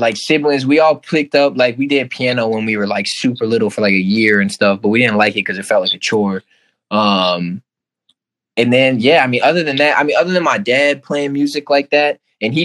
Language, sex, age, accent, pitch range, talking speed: English, male, 20-39, American, 100-130 Hz, 255 wpm